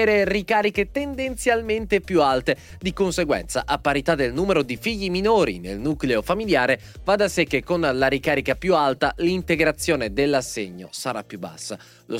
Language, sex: Italian, male